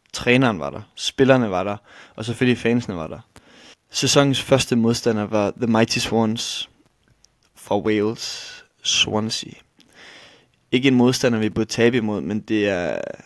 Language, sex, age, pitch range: Danish, male, 20-39, 110-125 Hz